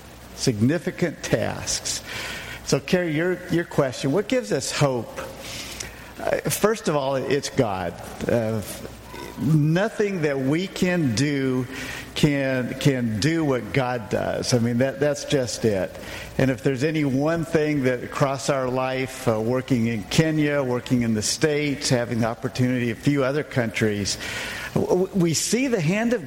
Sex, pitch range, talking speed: male, 130-175 Hz, 145 wpm